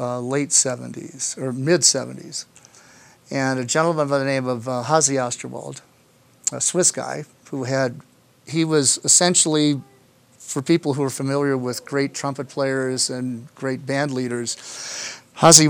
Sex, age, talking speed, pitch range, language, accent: male, 50-69, 140 wpm, 130-150 Hz, English, American